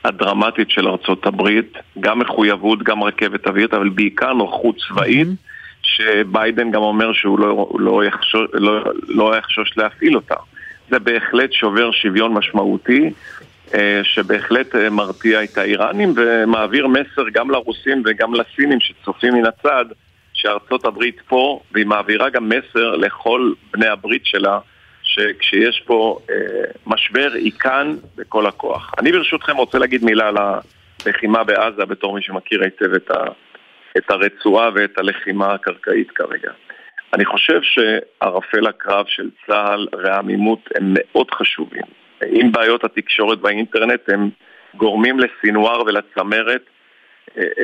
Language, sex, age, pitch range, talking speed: Hebrew, male, 50-69, 105-120 Hz, 125 wpm